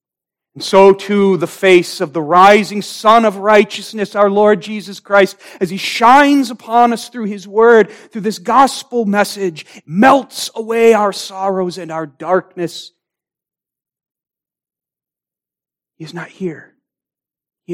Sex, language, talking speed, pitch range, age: male, English, 130 wpm, 145-205 Hz, 40-59